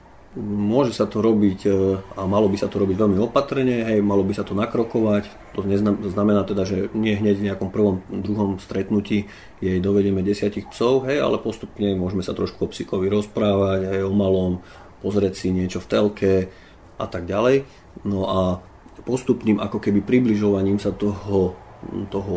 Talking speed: 165 wpm